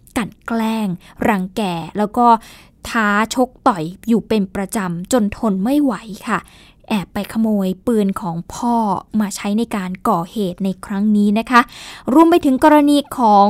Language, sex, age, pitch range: Thai, female, 20-39, 200-250 Hz